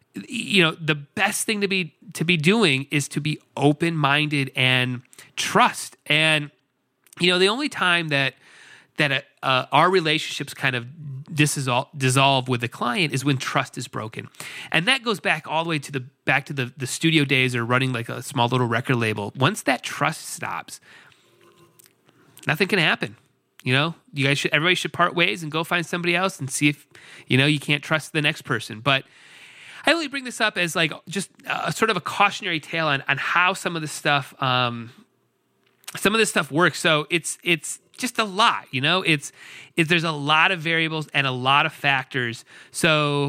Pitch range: 135-180 Hz